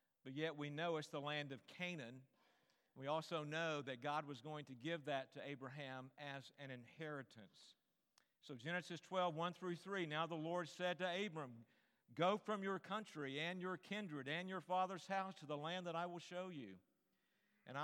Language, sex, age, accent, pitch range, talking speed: English, male, 50-69, American, 140-185 Hz, 190 wpm